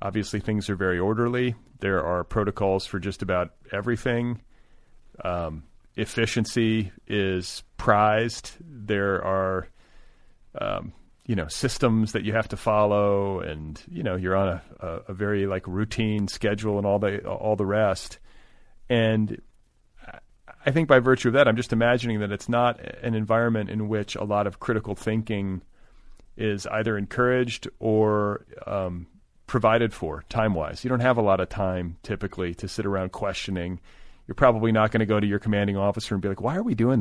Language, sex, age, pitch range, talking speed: English, male, 40-59, 100-115 Hz, 165 wpm